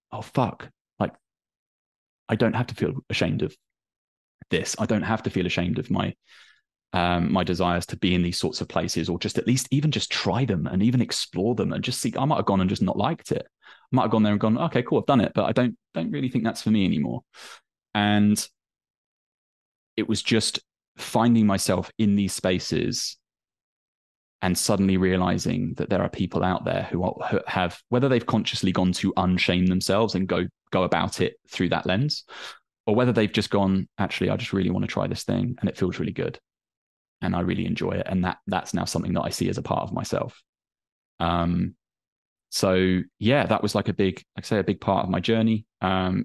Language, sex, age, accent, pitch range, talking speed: English, male, 20-39, British, 90-110 Hz, 215 wpm